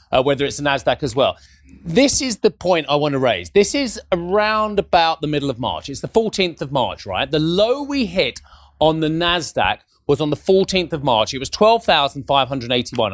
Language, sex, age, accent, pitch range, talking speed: English, male, 30-49, British, 130-210 Hz, 205 wpm